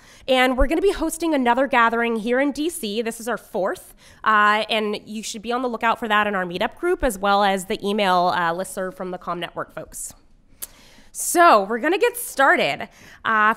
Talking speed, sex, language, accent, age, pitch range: 210 wpm, female, English, American, 20-39, 190-250 Hz